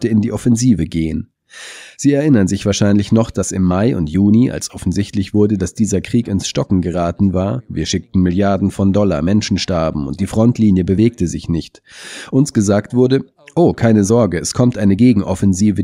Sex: male